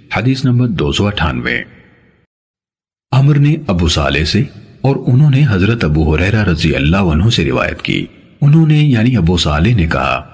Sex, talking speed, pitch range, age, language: male, 155 wpm, 80-135 Hz, 40-59, Urdu